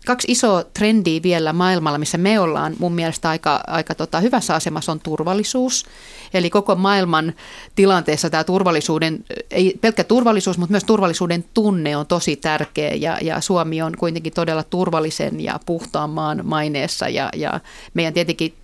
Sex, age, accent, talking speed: female, 30-49, native, 150 wpm